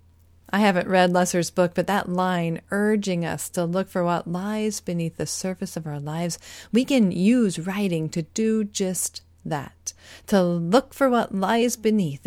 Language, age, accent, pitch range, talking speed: English, 40-59, American, 160-205 Hz, 170 wpm